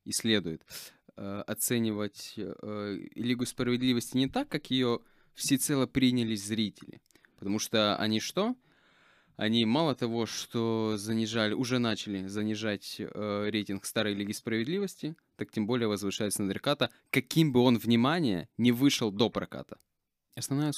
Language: Ukrainian